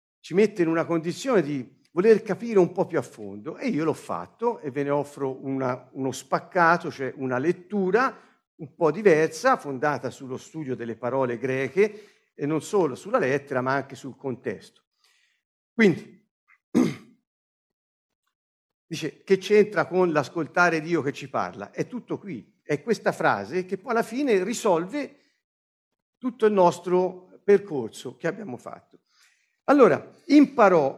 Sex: male